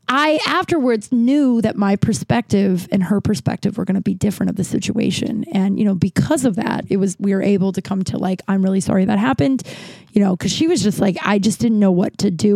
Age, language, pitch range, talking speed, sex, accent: 20-39, English, 190-220 Hz, 245 wpm, female, American